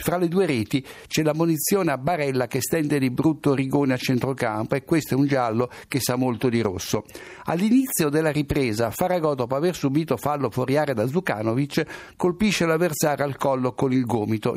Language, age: Italian, 60-79